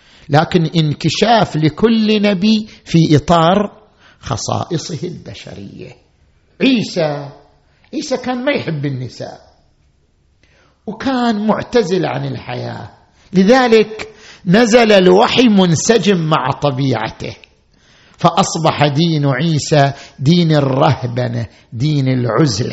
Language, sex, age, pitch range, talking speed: Arabic, male, 50-69, 155-240 Hz, 80 wpm